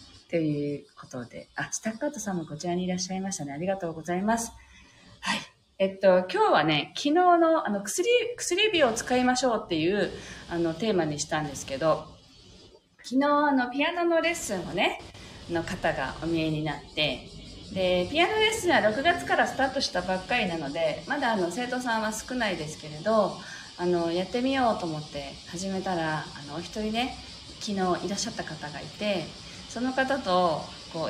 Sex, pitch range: female, 165-270 Hz